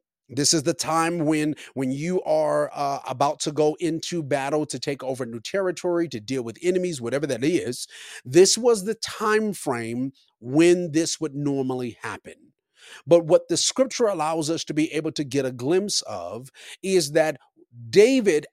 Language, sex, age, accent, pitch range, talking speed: English, male, 30-49, American, 140-190 Hz, 170 wpm